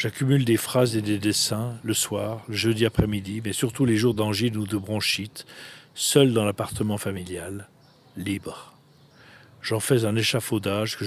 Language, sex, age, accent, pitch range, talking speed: German, male, 50-69, French, 100-115 Hz, 155 wpm